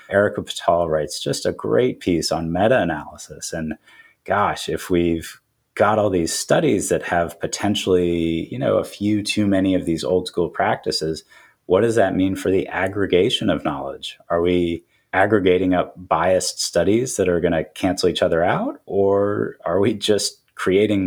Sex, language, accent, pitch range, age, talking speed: male, English, American, 85-105 Hz, 30-49, 170 wpm